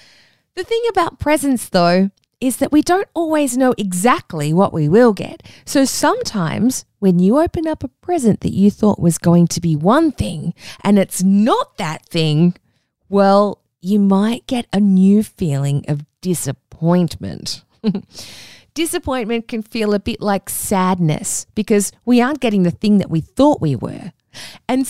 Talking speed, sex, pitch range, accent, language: 160 wpm, female, 185-260 Hz, Australian, English